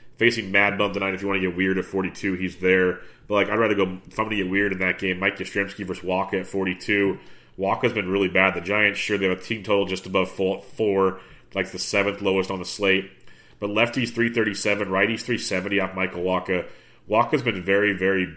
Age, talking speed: 30-49, 220 wpm